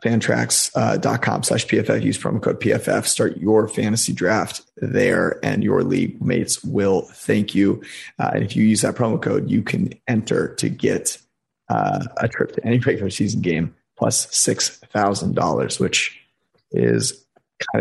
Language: English